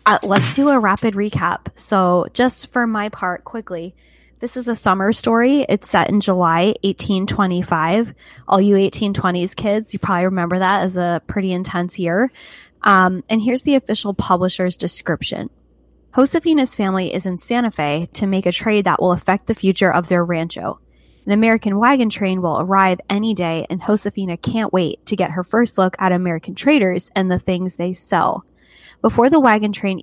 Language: English